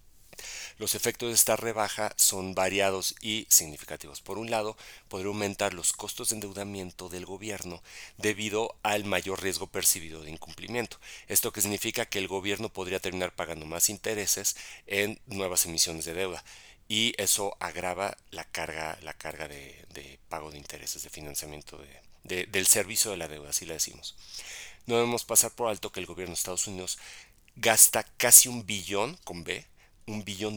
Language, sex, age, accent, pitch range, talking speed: Spanish, male, 40-59, Mexican, 85-105 Hz, 165 wpm